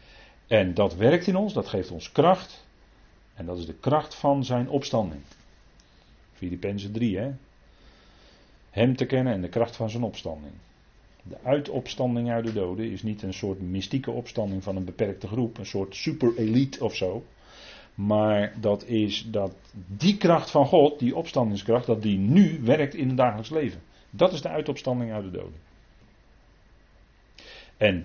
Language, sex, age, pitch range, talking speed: Dutch, male, 40-59, 100-135 Hz, 165 wpm